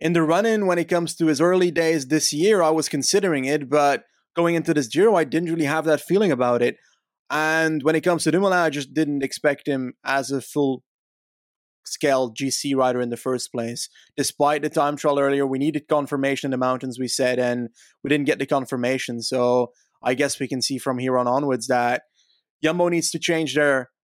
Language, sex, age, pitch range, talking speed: English, male, 20-39, 135-155 Hz, 210 wpm